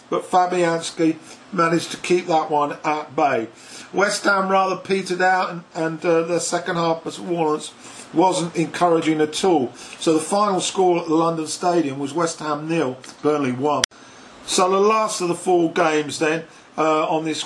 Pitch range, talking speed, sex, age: 150-175 Hz, 175 wpm, male, 50-69